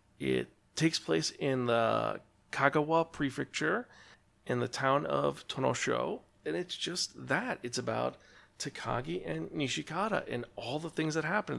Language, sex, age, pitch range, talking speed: English, male, 40-59, 100-135 Hz, 140 wpm